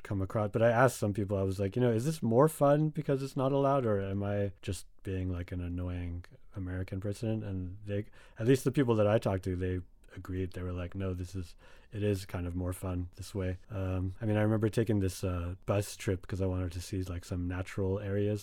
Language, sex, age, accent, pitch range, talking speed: English, male, 30-49, American, 95-115 Hz, 245 wpm